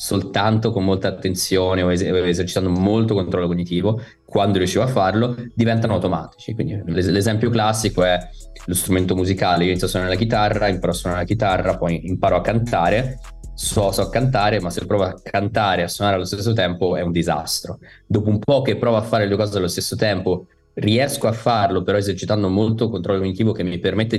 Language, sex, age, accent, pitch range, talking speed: Italian, male, 20-39, native, 90-110 Hz, 200 wpm